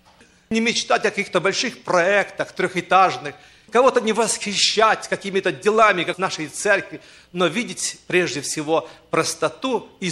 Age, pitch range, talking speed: 40-59, 155-210 Hz, 130 wpm